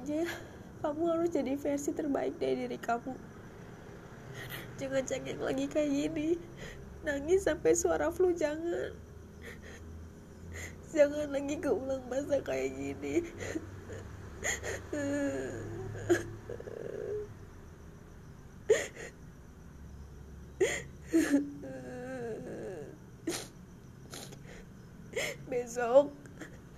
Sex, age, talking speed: female, 20-39, 60 wpm